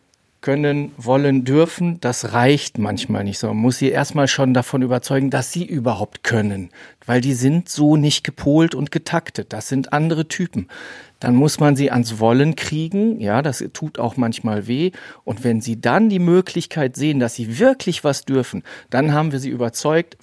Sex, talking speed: male, 180 wpm